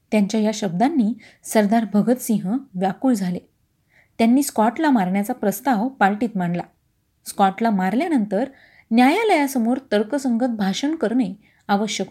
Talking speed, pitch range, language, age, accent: 100 wpm, 200-265 Hz, Marathi, 30-49, native